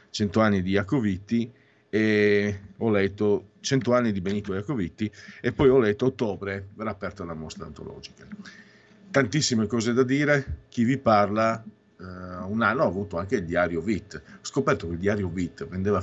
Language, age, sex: Italian, 50-69, male